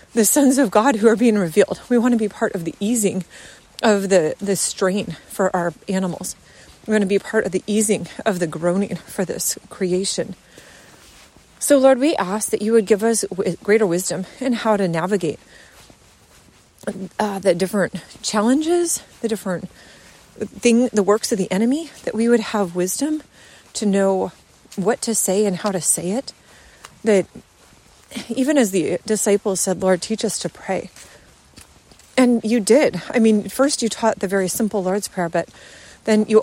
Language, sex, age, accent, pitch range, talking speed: English, female, 30-49, American, 195-240 Hz, 175 wpm